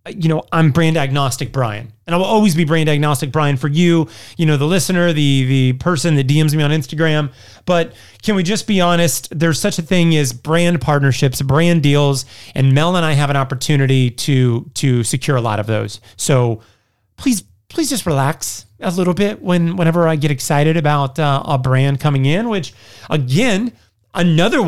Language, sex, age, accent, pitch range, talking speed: English, male, 30-49, American, 130-165 Hz, 190 wpm